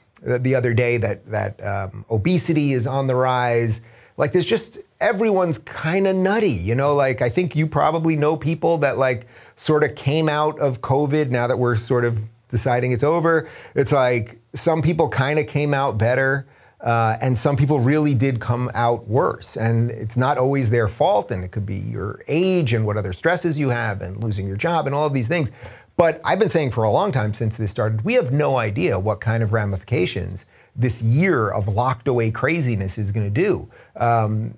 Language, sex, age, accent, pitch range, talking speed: English, male, 30-49, American, 110-145 Hz, 205 wpm